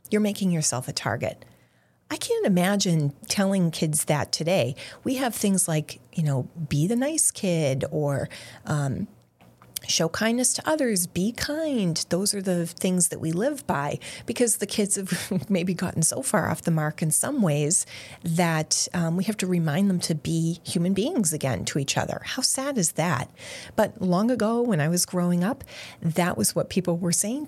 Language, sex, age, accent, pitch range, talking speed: English, female, 30-49, American, 155-195 Hz, 185 wpm